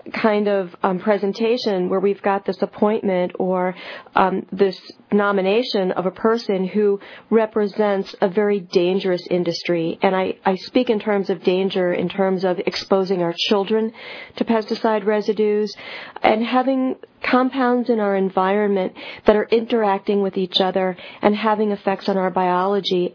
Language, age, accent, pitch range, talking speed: English, 40-59, American, 185-230 Hz, 150 wpm